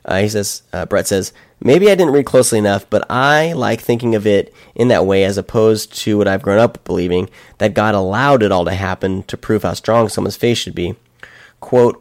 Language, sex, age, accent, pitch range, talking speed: English, male, 30-49, American, 100-125 Hz, 225 wpm